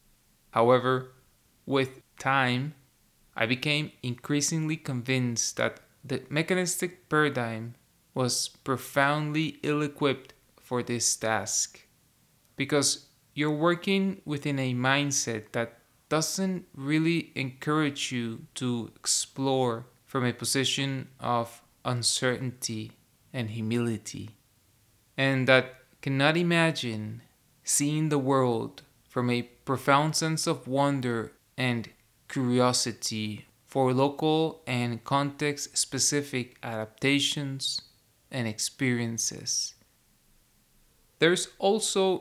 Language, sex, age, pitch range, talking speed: English, male, 20-39, 120-145 Hz, 90 wpm